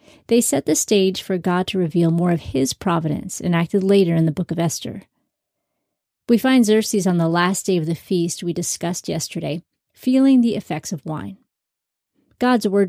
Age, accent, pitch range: 30-49, American, 170-210 Hz